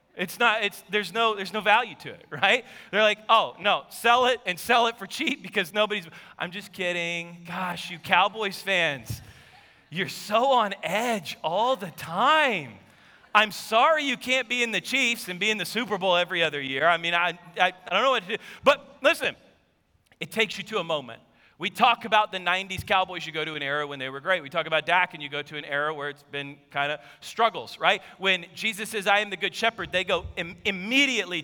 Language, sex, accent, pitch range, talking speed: English, male, American, 180-230 Hz, 220 wpm